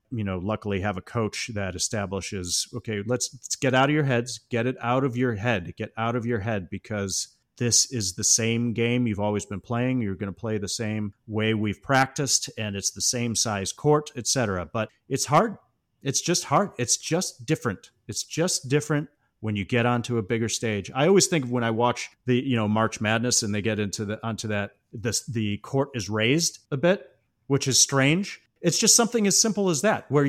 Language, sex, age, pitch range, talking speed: English, male, 30-49, 105-130 Hz, 215 wpm